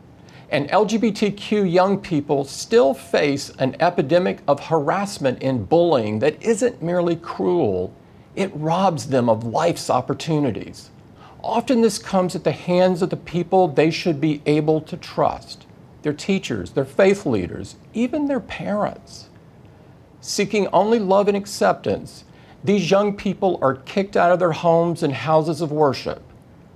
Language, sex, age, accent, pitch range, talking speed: English, male, 50-69, American, 135-185 Hz, 140 wpm